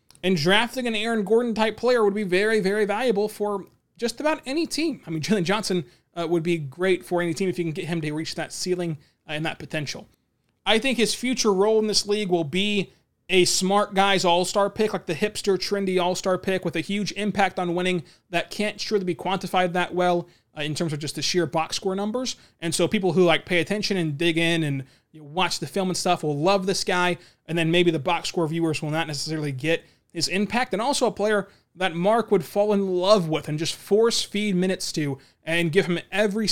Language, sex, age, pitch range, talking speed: English, male, 20-39, 165-205 Hz, 225 wpm